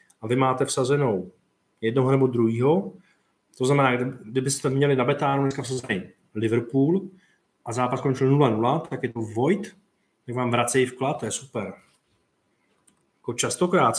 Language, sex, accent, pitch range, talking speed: Czech, male, native, 110-135 Hz, 140 wpm